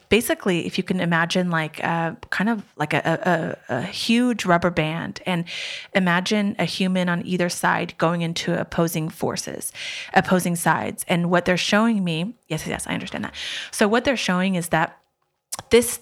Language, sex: English, female